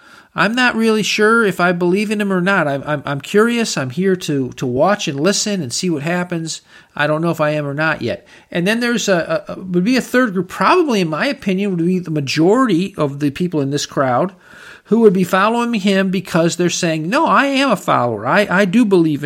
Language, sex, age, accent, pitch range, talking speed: English, male, 50-69, American, 150-210 Hz, 235 wpm